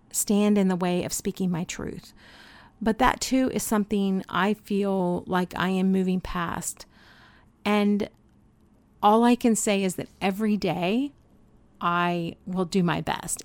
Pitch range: 175-210 Hz